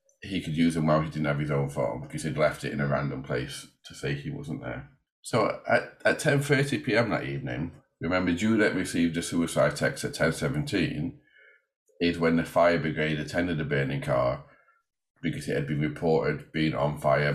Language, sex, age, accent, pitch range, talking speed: English, male, 40-59, British, 75-95 Hz, 190 wpm